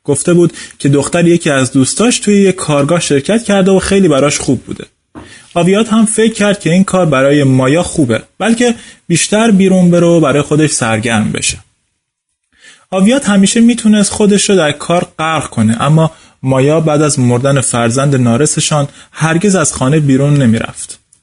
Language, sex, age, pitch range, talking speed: Persian, male, 30-49, 130-185 Hz, 160 wpm